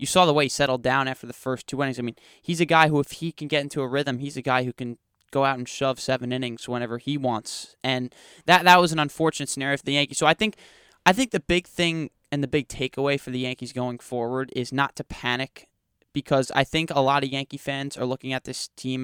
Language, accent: English, American